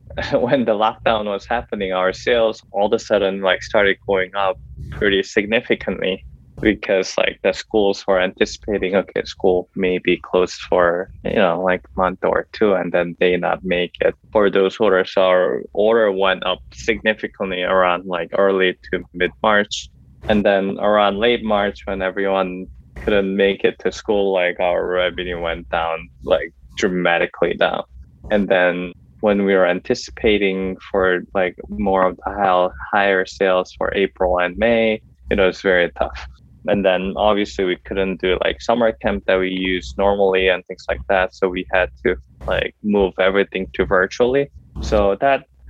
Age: 20-39